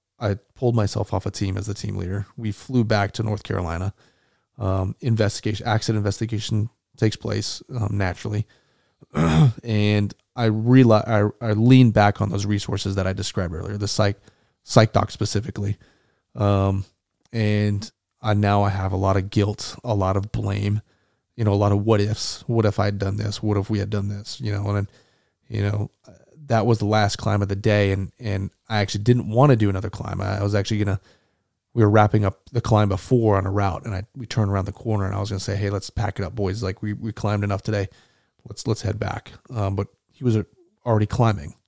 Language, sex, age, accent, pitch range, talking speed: English, male, 30-49, American, 100-110 Hz, 215 wpm